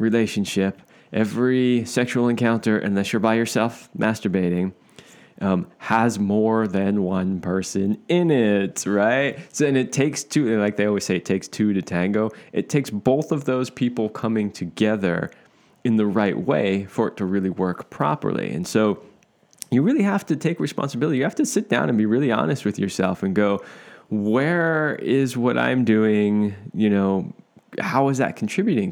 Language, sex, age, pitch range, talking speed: English, male, 20-39, 105-130 Hz, 170 wpm